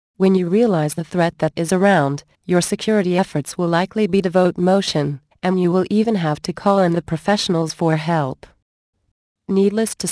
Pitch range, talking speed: 165-195 Hz, 180 wpm